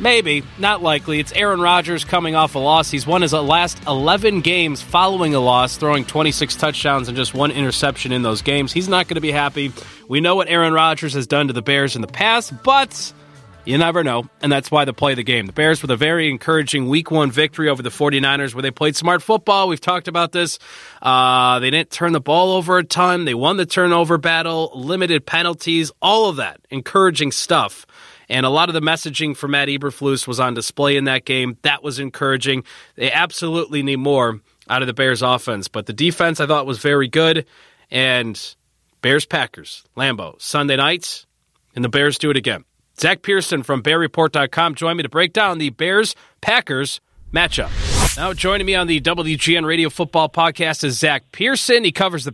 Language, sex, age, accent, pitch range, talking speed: English, male, 20-39, American, 135-170 Hz, 200 wpm